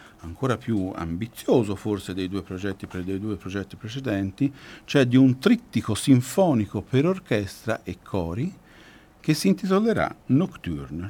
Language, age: Italian, 50-69